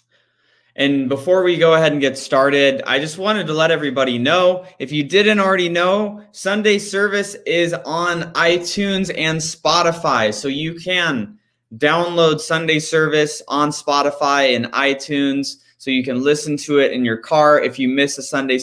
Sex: male